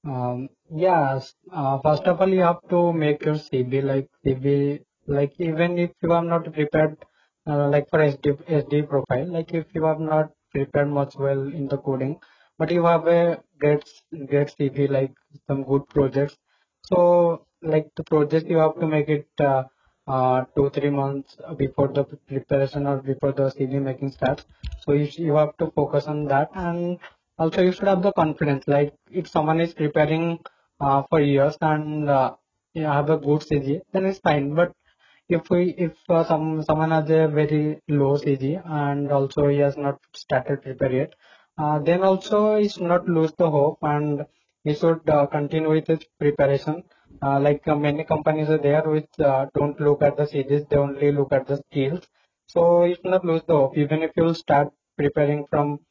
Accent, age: Indian, 20-39